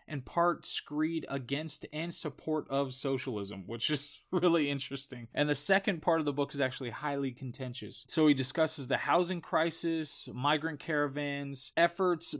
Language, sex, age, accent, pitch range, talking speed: English, male, 20-39, American, 130-155 Hz, 155 wpm